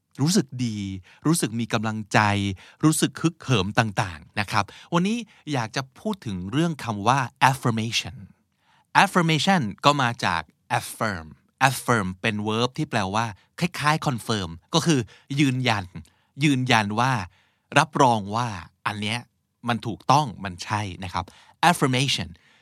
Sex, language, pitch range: male, Thai, 100-135 Hz